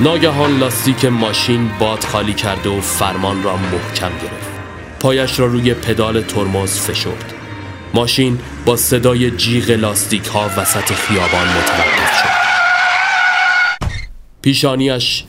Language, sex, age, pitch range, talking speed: Persian, male, 30-49, 95-125 Hz, 110 wpm